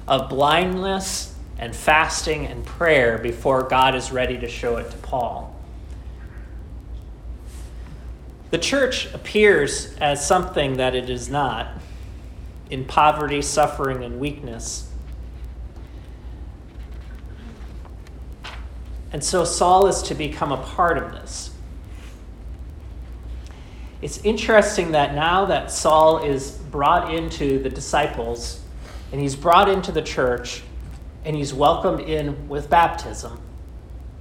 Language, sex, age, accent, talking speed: English, male, 40-59, American, 110 wpm